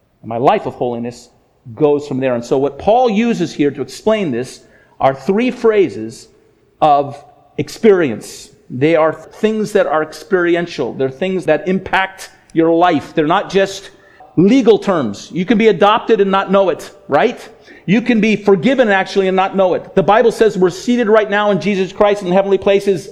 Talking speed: 180 wpm